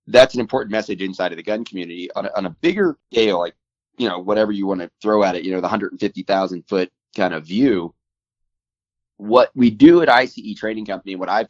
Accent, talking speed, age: American, 220 wpm, 30-49